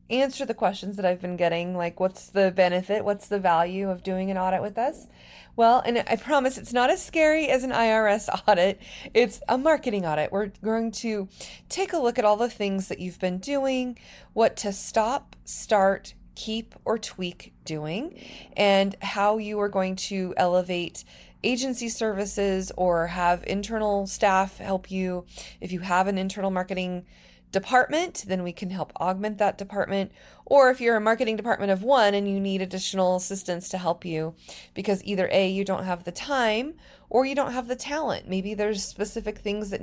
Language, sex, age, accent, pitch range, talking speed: English, female, 20-39, American, 180-220 Hz, 185 wpm